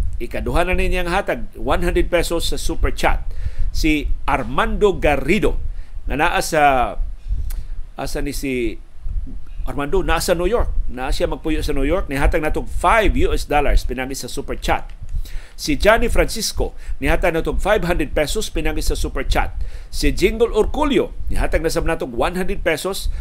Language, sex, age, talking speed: Filipino, male, 50-69, 140 wpm